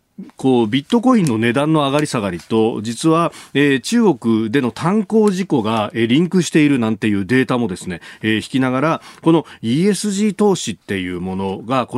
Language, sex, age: Japanese, male, 40-59